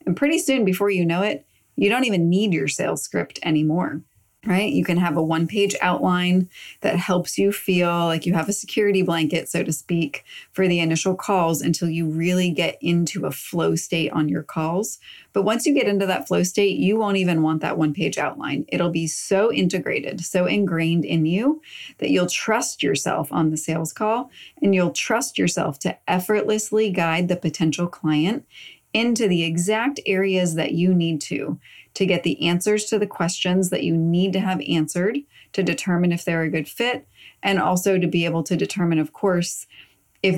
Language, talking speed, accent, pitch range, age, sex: English, 190 wpm, American, 165-200 Hz, 30-49, female